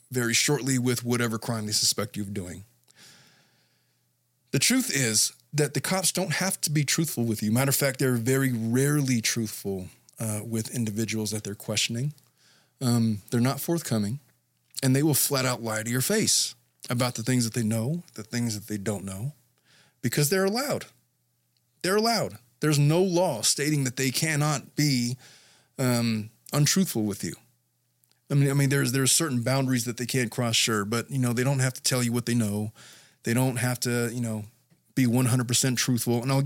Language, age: English, 30-49